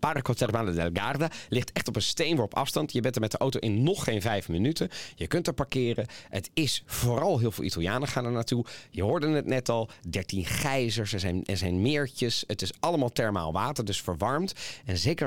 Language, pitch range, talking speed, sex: Dutch, 105-135 Hz, 210 wpm, male